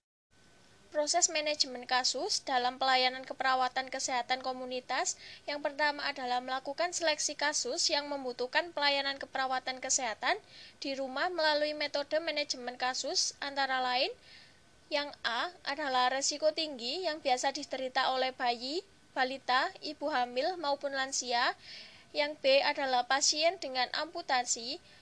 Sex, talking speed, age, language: female, 115 wpm, 10-29, Indonesian